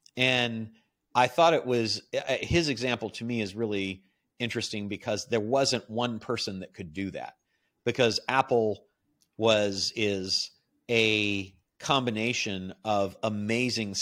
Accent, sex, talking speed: American, male, 125 wpm